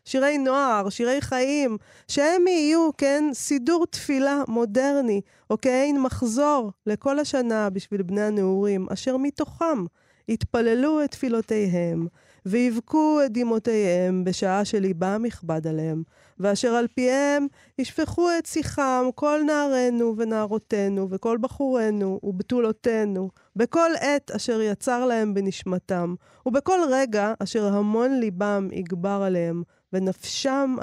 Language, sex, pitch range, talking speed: Hebrew, female, 195-280 Hz, 110 wpm